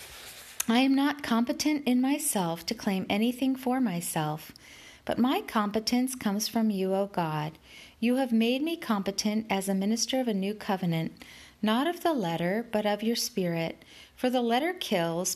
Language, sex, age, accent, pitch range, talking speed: English, female, 40-59, American, 185-250 Hz, 170 wpm